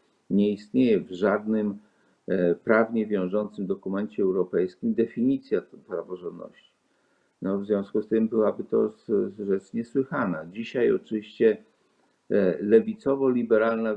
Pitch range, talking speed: 95-110 Hz, 90 wpm